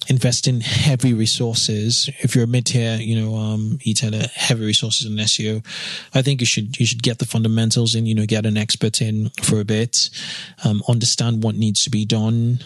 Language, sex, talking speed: English, male, 200 wpm